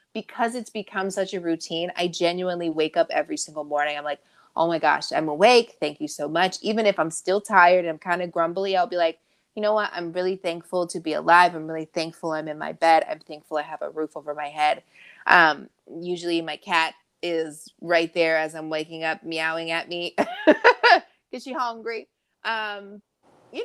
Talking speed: 205 wpm